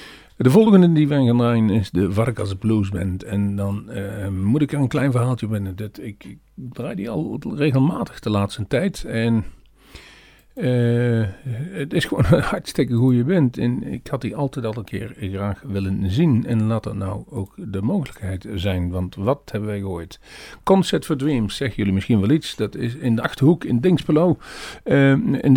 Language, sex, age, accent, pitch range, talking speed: Dutch, male, 50-69, Dutch, 100-135 Hz, 190 wpm